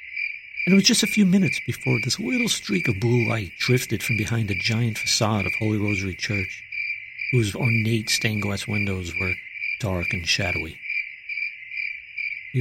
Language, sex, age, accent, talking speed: English, male, 50-69, American, 155 wpm